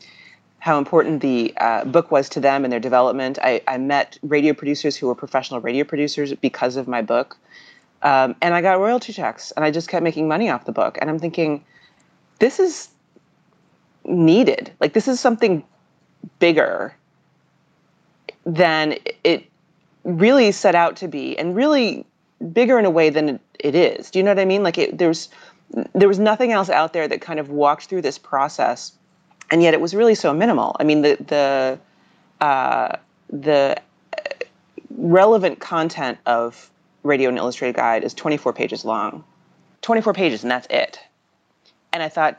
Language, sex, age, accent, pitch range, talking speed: English, female, 30-49, American, 130-180 Hz, 170 wpm